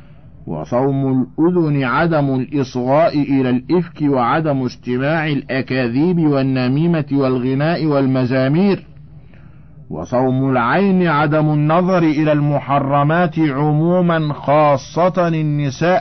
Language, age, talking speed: Arabic, 50-69, 80 wpm